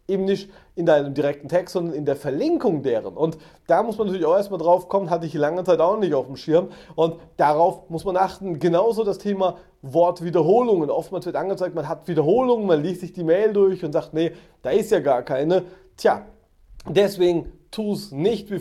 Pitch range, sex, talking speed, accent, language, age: 155-190 Hz, male, 205 wpm, German, German, 30-49